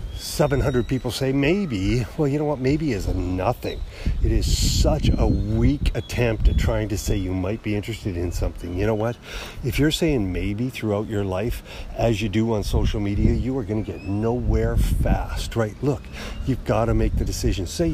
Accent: American